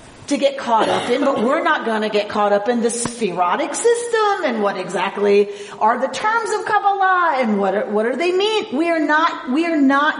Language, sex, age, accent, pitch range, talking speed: English, female, 40-59, American, 220-310 Hz, 220 wpm